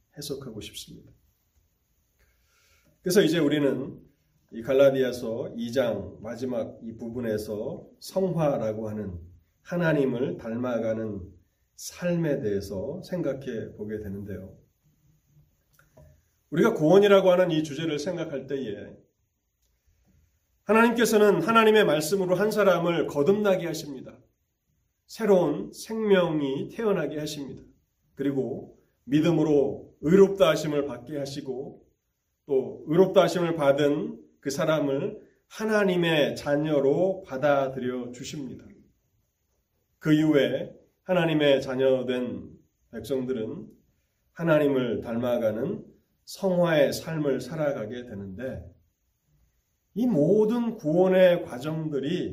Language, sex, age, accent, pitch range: Korean, male, 30-49, native, 120-180 Hz